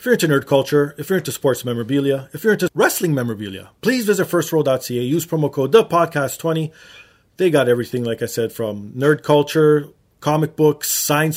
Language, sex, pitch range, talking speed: English, male, 125-170 Hz, 180 wpm